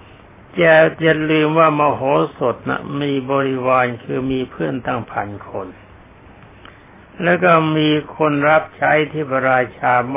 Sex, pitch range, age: male, 105-150 Hz, 60-79